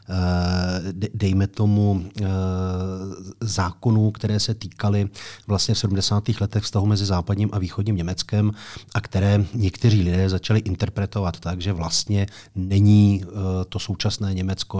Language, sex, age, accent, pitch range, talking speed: Czech, male, 40-59, native, 95-110 Hz, 120 wpm